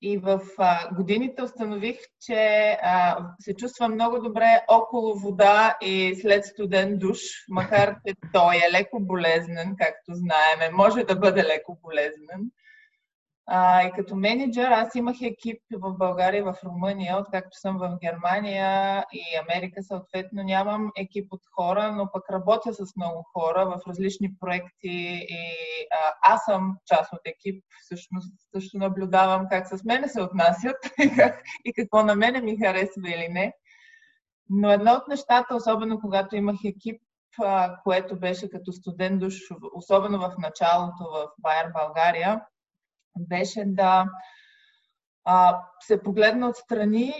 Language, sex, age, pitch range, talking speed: Bulgarian, female, 20-39, 185-215 Hz, 135 wpm